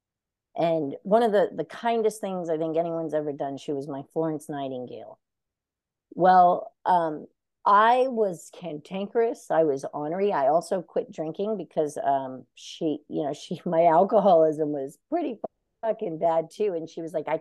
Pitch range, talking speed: 150-195 Hz, 160 wpm